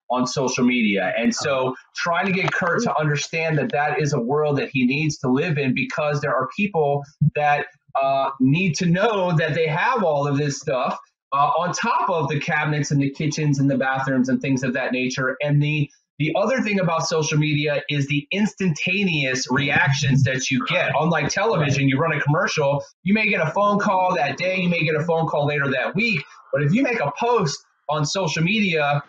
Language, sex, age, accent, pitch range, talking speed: English, male, 30-49, American, 140-175 Hz, 210 wpm